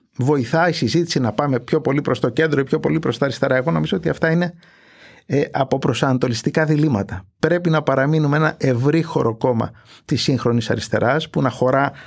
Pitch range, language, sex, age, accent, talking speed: 120-155 Hz, Greek, male, 50-69, native, 185 wpm